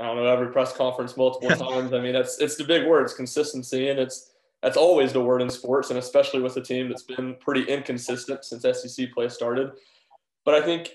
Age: 20-39